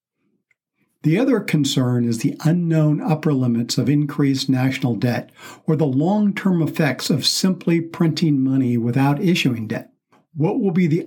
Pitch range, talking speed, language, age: 130-165 Hz, 145 wpm, English, 60-79